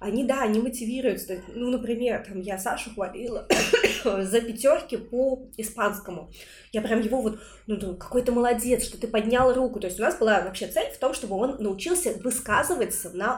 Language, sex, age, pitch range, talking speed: Russian, female, 20-39, 200-245 Hz, 185 wpm